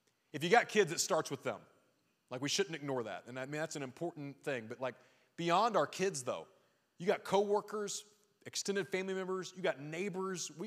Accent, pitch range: American, 120-170 Hz